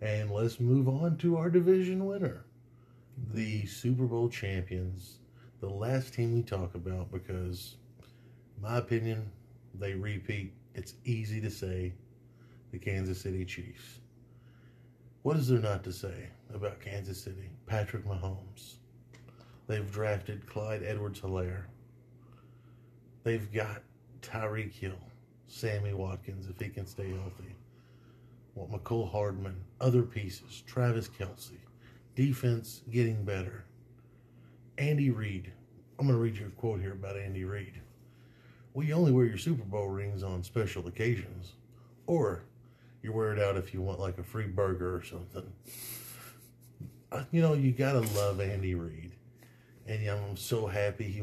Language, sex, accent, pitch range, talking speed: English, male, American, 100-120 Hz, 140 wpm